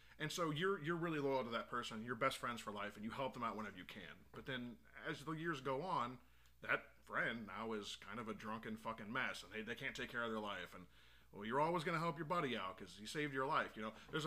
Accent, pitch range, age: American, 105-160 Hz, 30-49